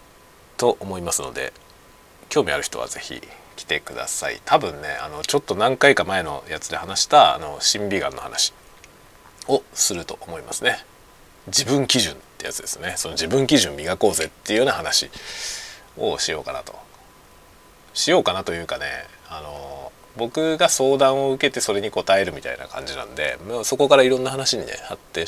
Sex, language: male, Japanese